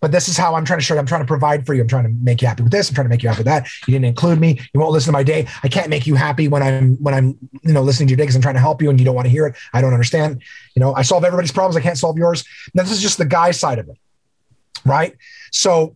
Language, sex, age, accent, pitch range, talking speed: English, male, 30-49, American, 130-175 Hz, 350 wpm